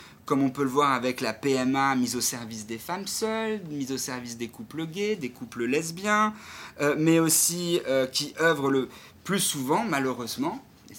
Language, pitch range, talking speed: French, 135-190 Hz, 185 wpm